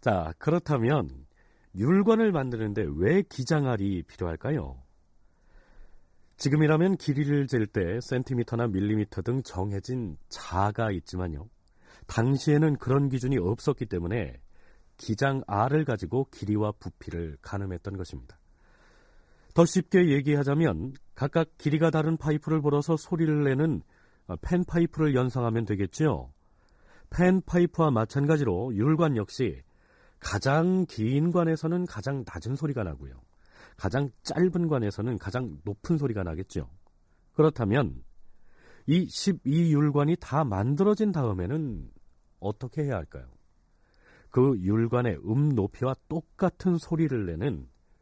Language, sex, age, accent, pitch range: Korean, male, 40-59, native, 95-155 Hz